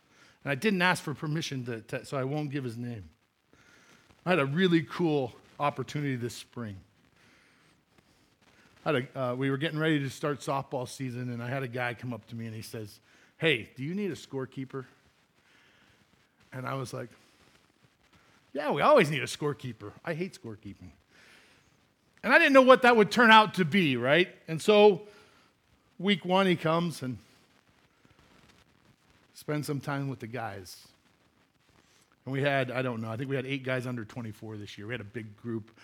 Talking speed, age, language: 185 wpm, 50-69, English